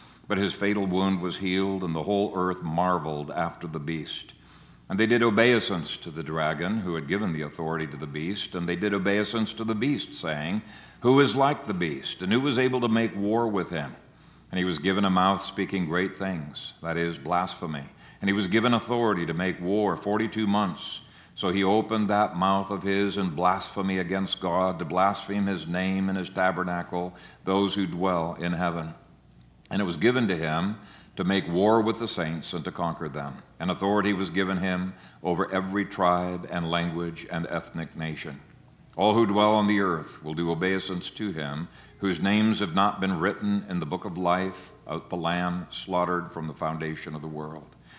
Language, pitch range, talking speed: English, 85-100 Hz, 195 wpm